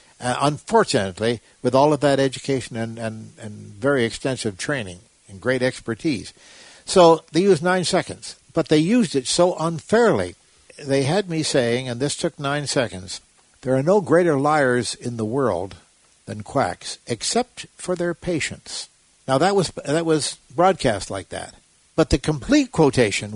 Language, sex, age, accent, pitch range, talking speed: English, male, 60-79, American, 120-170 Hz, 160 wpm